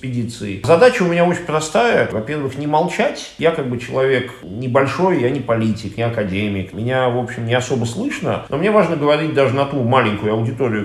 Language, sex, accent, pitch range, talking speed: Russian, male, native, 115-160 Hz, 185 wpm